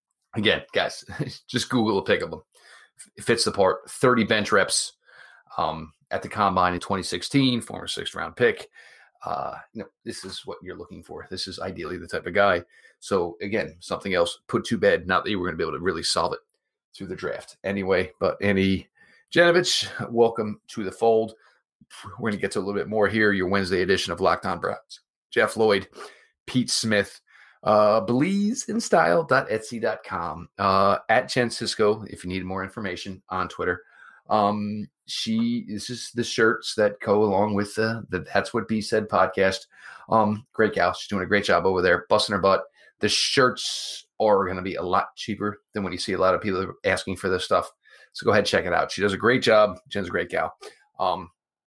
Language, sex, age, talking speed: English, male, 30-49, 200 wpm